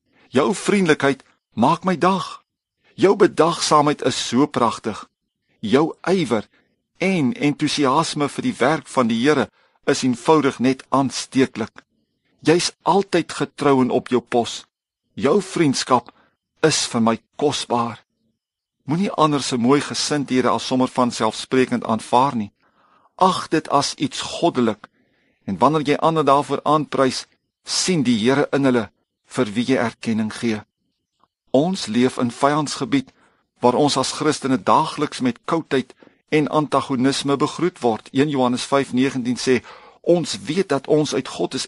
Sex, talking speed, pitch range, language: male, 135 wpm, 125-150 Hz, English